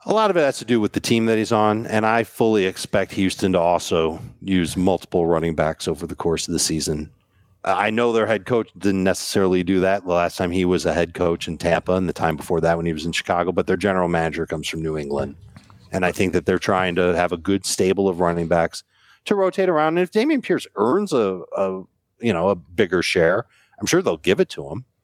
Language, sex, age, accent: English, male, 40-59, American